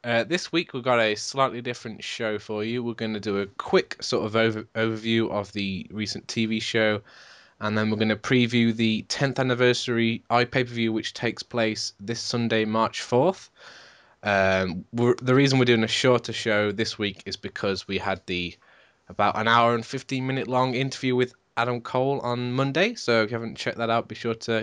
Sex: male